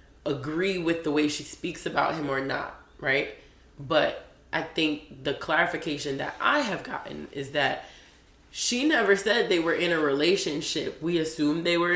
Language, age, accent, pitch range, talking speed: English, 20-39, American, 135-175 Hz, 170 wpm